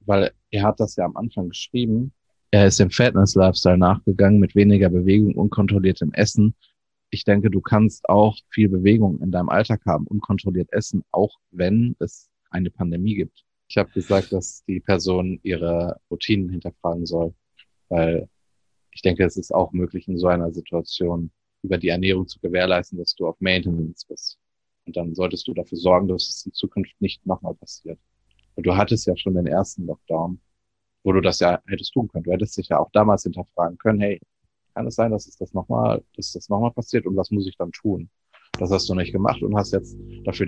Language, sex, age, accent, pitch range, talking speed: German, male, 30-49, German, 90-105 Hz, 195 wpm